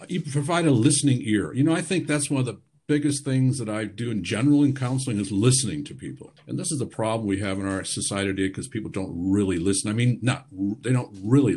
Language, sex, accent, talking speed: English, male, American, 245 wpm